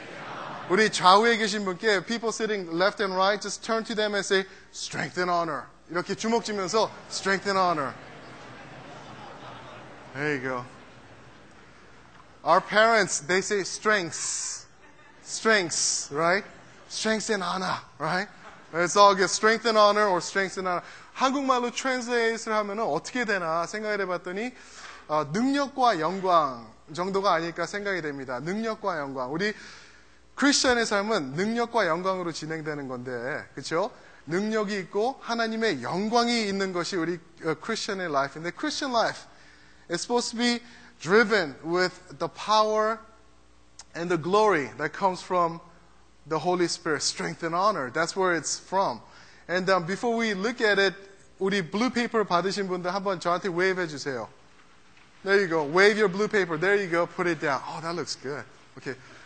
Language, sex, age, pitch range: Korean, male, 20-39, 170-215 Hz